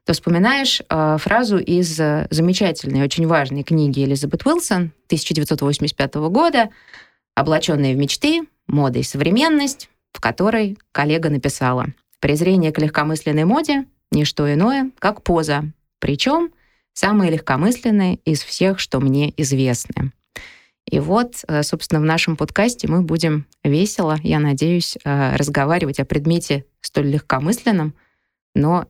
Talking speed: 125 wpm